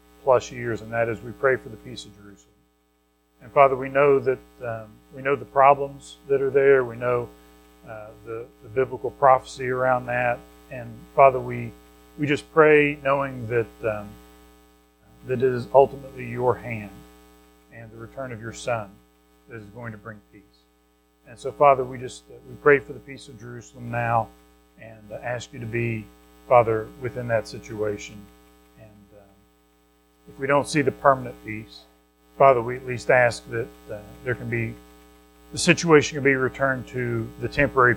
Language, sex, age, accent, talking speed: English, male, 40-59, American, 170 wpm